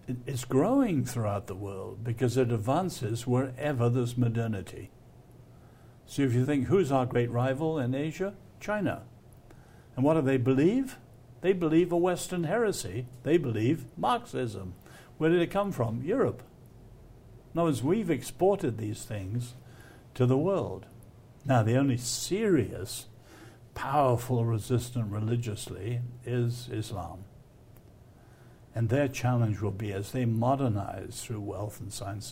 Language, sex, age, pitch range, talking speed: English, male, 60-79, 115-140 Hz, 135 wpm